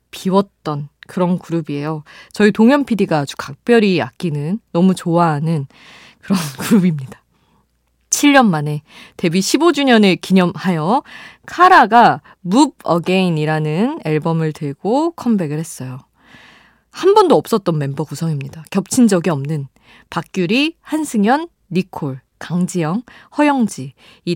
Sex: female